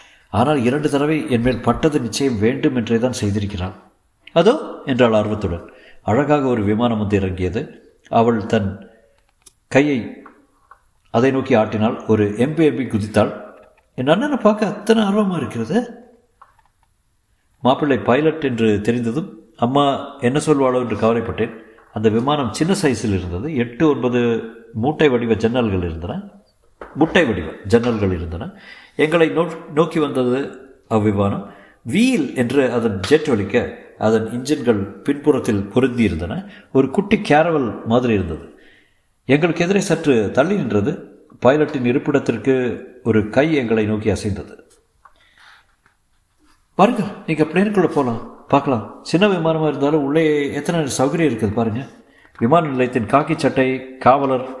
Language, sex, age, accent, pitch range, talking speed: Tamil, male, 50-69, native, 110-150 Hz, 120 wpm